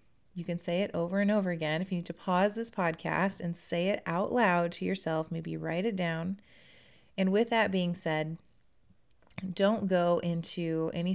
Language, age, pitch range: English, 30-49, 160-185 Hz